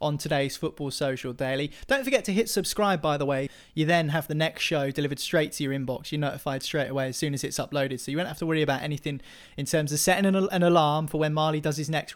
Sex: male